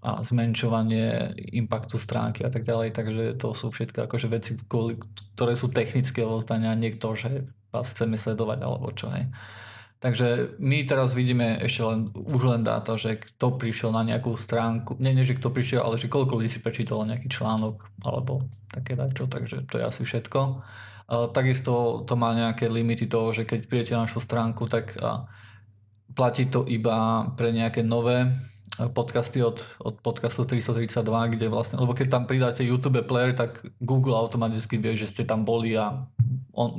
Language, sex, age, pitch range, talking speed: Slovak, male, 20-39, 110-120 Hz, 175 wpm